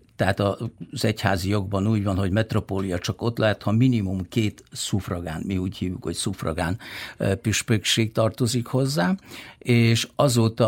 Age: 60-79